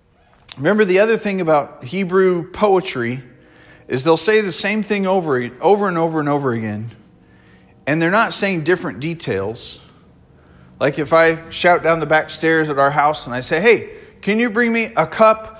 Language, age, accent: English, 40-59, American